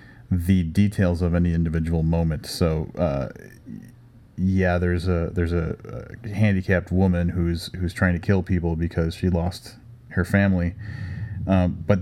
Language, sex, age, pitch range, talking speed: English, male, 30-49, 85-110 Hz, 140 wpm